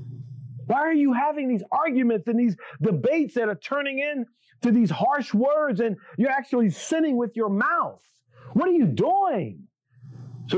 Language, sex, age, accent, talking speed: English, male, 40-59, American, 165 wpm